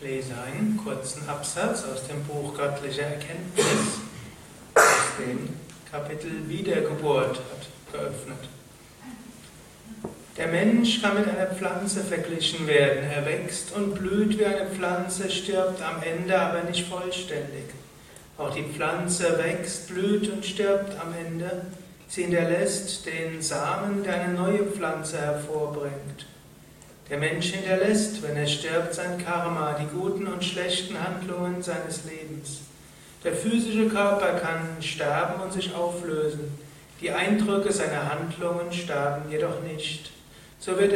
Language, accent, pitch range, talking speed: German, German, 150-185 Hz, 125 wpm